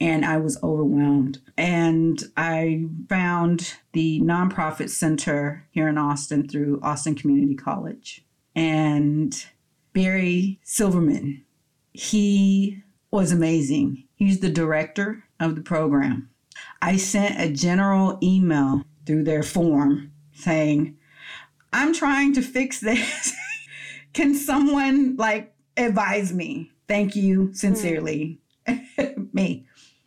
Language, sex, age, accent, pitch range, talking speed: English, female, 40-59, American, 145-195 Hz, 105 wpm